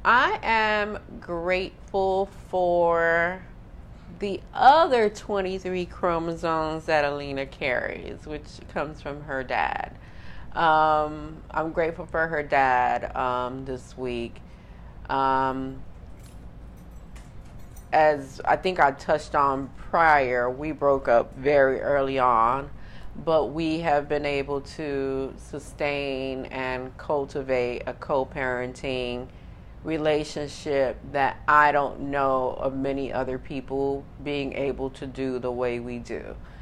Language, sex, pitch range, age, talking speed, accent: English, female, 135-155 Hz, 30-49, 110 wpm, American